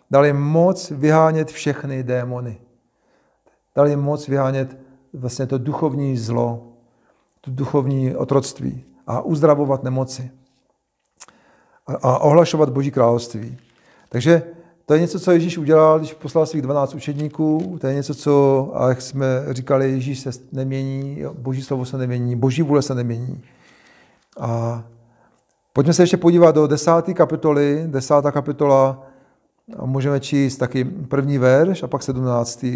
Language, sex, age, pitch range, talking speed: Czech, male, 50-69, 130-155 Hz, 135 wpm